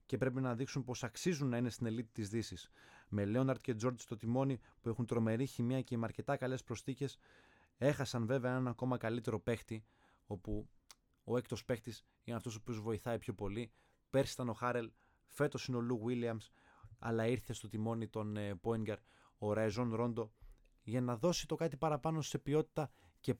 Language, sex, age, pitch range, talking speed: Greek, male, 20-39, 110-130 Hz, 180 wpm